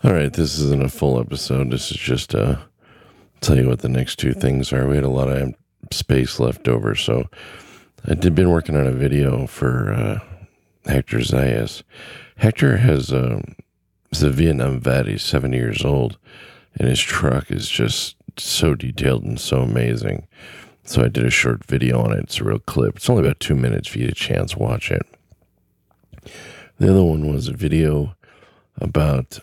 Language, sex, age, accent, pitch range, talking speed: English, male, 40-59, American, 65-80 Hz, 180 wpm